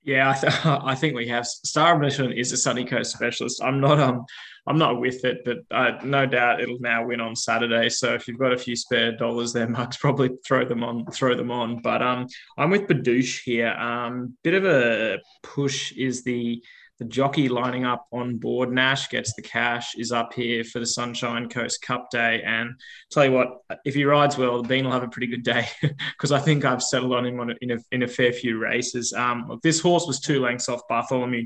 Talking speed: 225 wpm